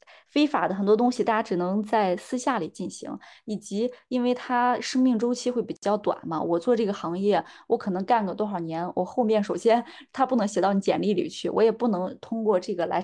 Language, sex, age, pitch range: Chinese, female, 20-39, 180-240 Hz